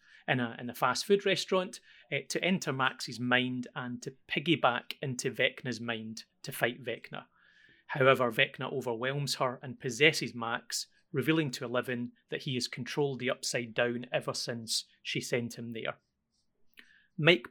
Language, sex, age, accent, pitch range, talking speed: English, male, 30-49, British, 125-150 Hz, 150 wpm